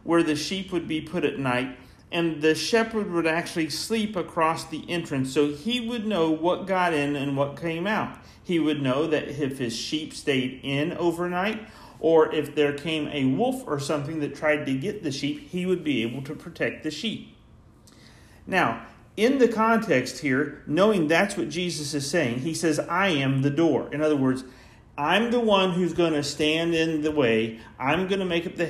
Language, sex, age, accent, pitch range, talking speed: English, male, 40-59, American, 130-175 Hz, 200 wpm